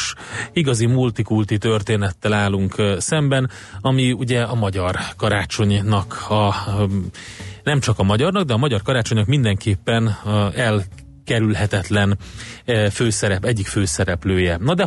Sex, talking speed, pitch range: male, 110 wpm, 100-120 Hz